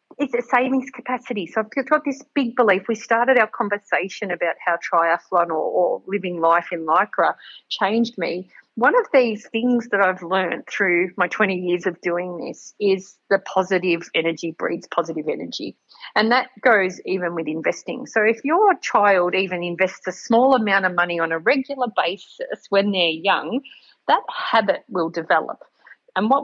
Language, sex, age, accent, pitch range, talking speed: English, female, 40-59, Australian, 175-250 Hz, 175 wpm